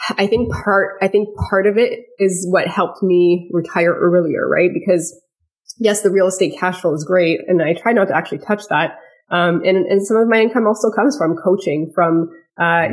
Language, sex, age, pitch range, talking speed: English, female, 20-39, 165-190 Hz, 210 wpm